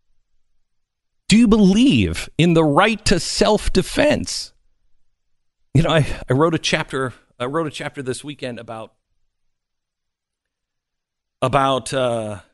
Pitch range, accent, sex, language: 120-190 Hz, American, male, English